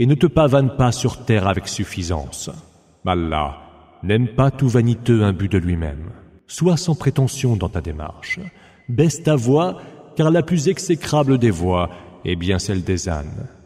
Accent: French